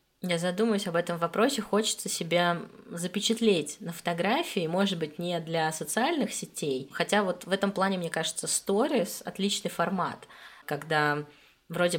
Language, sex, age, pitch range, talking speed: Russian, female, 20-39, 160-205 Hz, 140 wpm